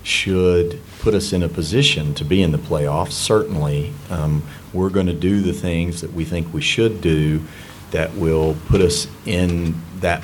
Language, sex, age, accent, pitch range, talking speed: English, male, 40-59, American, 80-95 Hz, 180 wpm